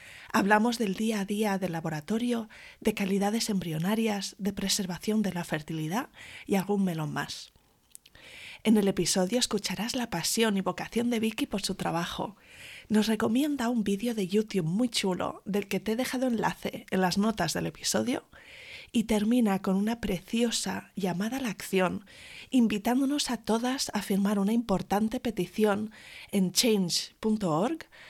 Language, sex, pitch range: Spanish, female, 185-230 Hz